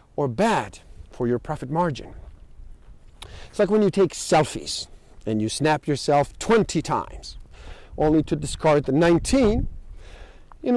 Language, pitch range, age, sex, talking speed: English, 115-175 Hz, 50-69, male, 135 wpm